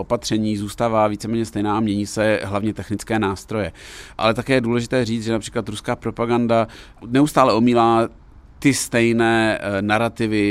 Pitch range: 100-115 Hz